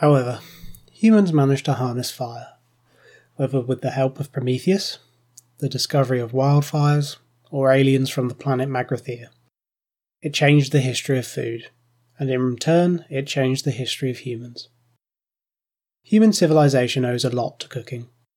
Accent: British